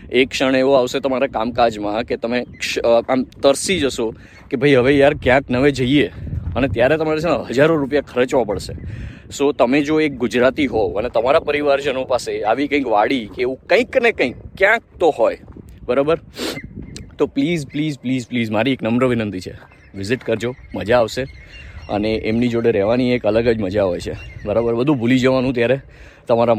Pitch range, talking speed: 110-135 Hz, 165 wpm